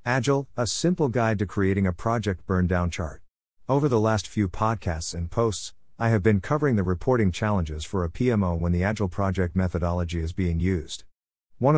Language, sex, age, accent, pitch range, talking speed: English, male, 50-69, American, 85-110 Hz, 185 wpm